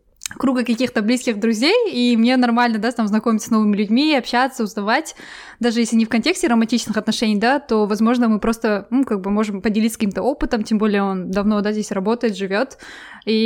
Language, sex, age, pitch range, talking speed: Russian, female, 20-39, 215-260 Hz, 190 wpm